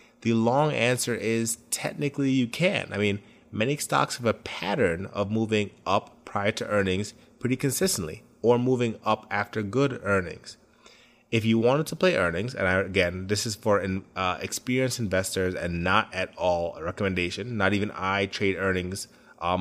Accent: American